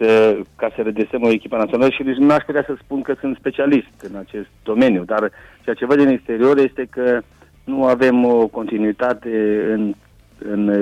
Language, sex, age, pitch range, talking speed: Romanian, male, 50-69, 100-125 Hz, 185 wpm